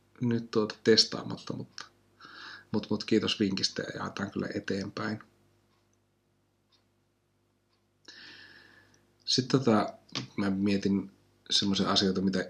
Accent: native